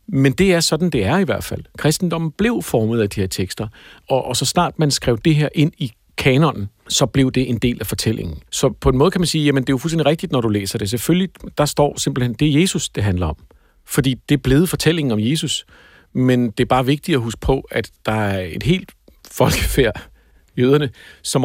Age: 50-69